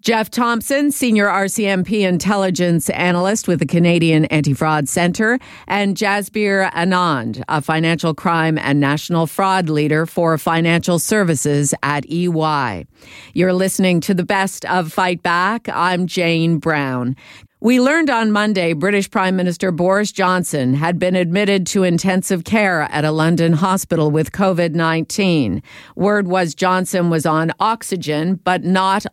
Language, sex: English, female